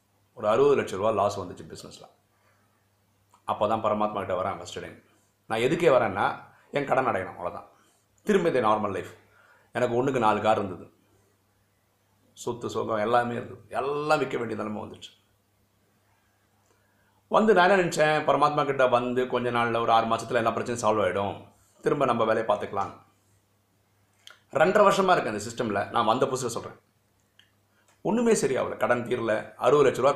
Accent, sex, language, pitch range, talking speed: native, male, Tamil, 100-120 Hz, 140 wpm